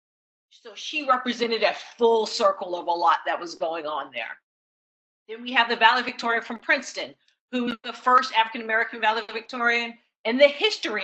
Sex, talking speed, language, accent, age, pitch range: female, 170 wpm, English, American, 40-59, 190-245 Hz